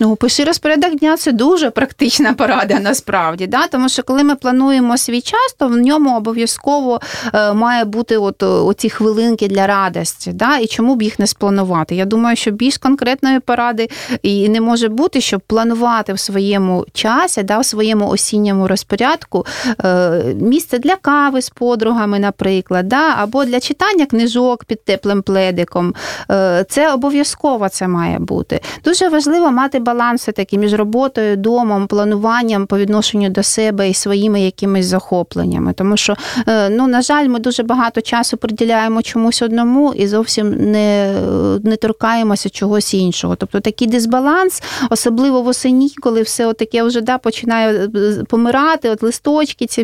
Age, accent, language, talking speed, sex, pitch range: 30-49, native, Russian, 165 wpm, female, 205-255 Hz